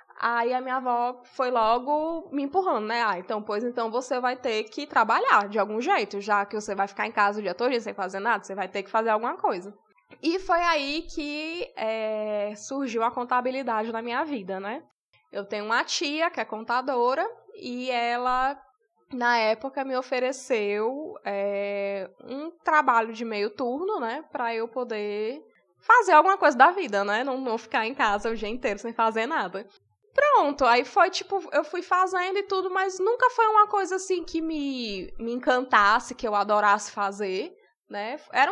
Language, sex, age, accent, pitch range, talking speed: Portuguese, female, 10-29, Brazilian, 225-320 Hz, 185 wpm